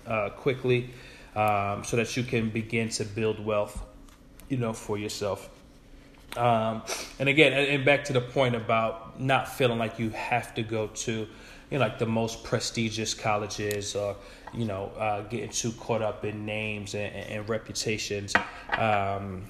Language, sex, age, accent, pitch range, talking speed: English, male, 20-39, American, 105-120 Hz, 165 wpm